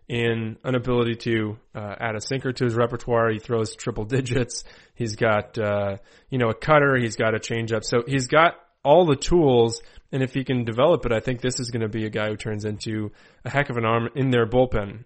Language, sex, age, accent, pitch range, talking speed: English, male, 20-39, American, 110-130 Hz, 235 wpm